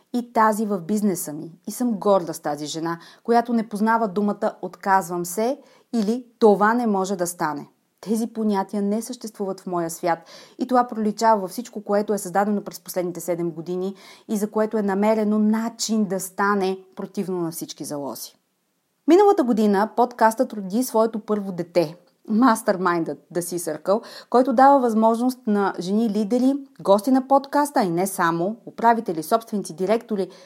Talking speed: 155 wpm